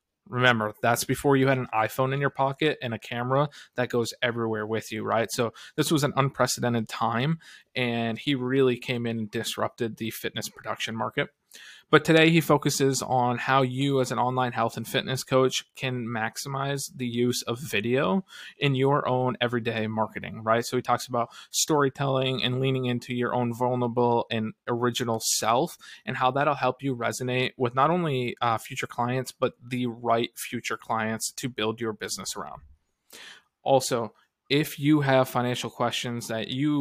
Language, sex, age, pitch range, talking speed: English, male, 20-39, 115-135 Hz, 175 wpm